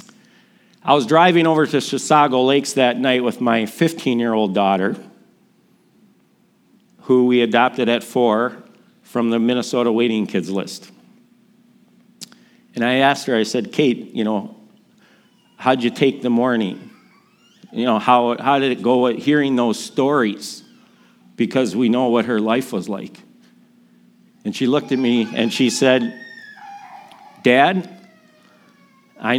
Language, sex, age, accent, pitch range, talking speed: English, male, 50-69, American, 115-150 Hz, 135 wpm